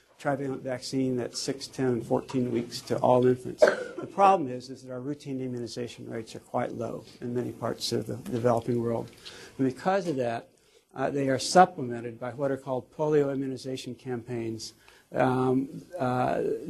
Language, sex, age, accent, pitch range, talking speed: English, male, 60-79, American, 120-140 Hz, 170 wpm